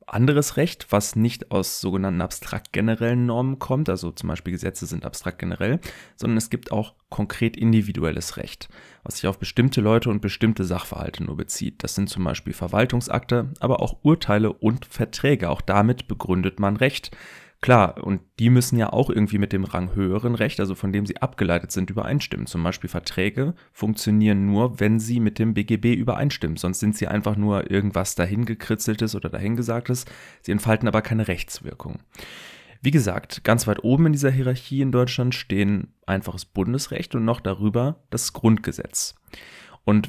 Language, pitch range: German, 95-120 Hz